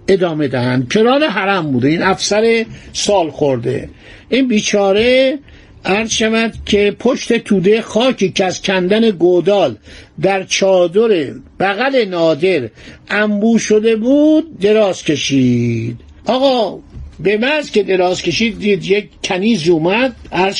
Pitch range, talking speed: 165-220 Hz, 115 wpm